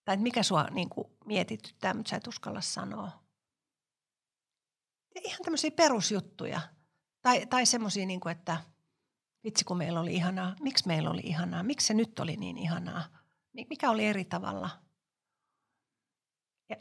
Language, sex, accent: Finnish, female, native